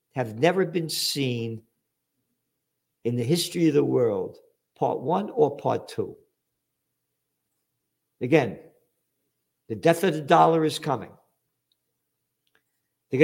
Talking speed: 110 wpm